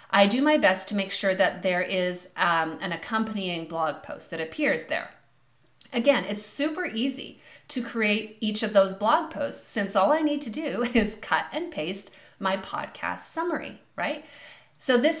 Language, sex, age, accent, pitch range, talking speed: English, female, 30-49, American, 180-260 Hz, 180 wpm